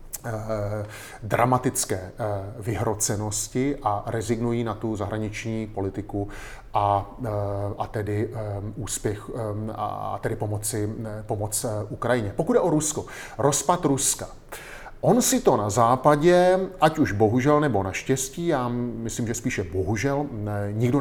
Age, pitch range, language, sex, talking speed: 30-49, 105-150 Hz, Slovak, male, 110 wpm